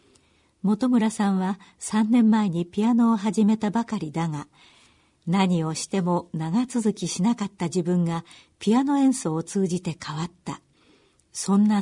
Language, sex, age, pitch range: Japanese, female, 60-79, 170-220 Hz